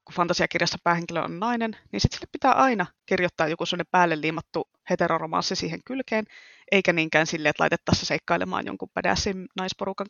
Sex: female